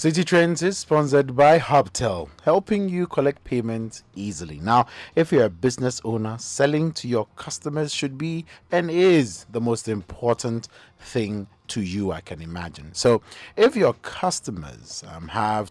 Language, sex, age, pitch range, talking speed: English, male, 30-49, 100-150 Hz, 155 wpm